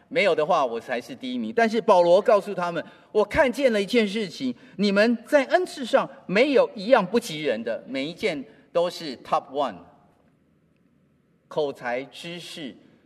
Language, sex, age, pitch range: Chinese, male, 40-59, 160-240 Hz